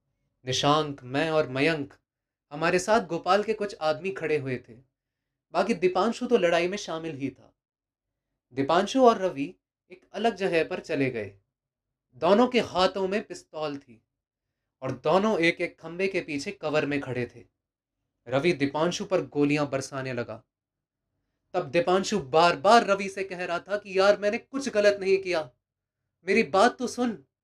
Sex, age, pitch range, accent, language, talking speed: male, 20-39, 130-190 Hz, native, Hindi, 160 wpm